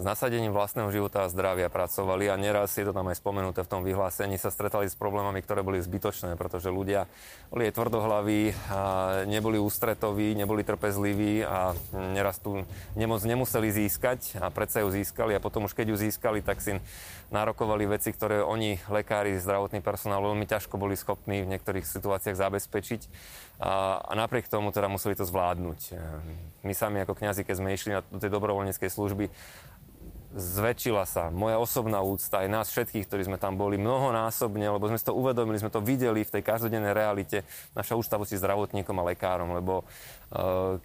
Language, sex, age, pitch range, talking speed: Slovak, male, 20-39, 95-110 Hz, 170 wpm